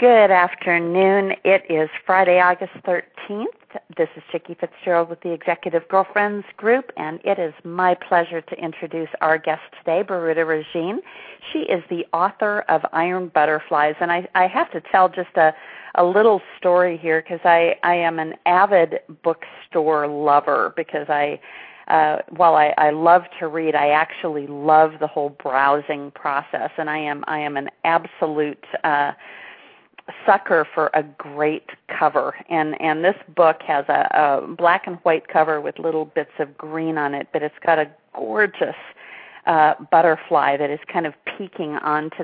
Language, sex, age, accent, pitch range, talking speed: English, female, 50-69, American, 150-180 Hz, 165 wpm